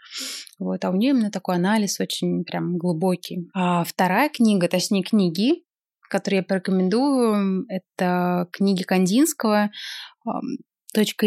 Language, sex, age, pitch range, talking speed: Russian, female, 20-39, 180-205 Hz, 115 wpm